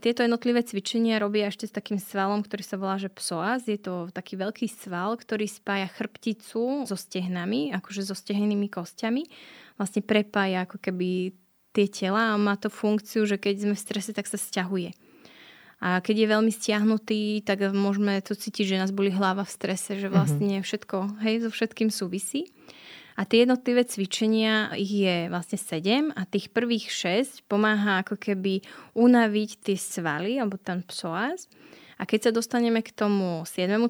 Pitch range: 195-225 Hz